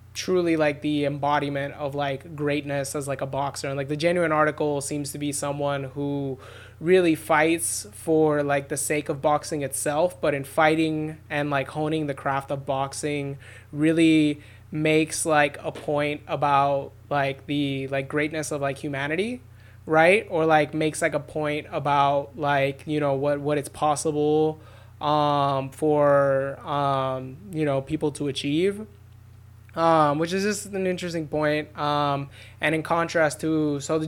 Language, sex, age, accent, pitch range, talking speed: English, male, 20-39, American, 140-155 Hz, 160 wpm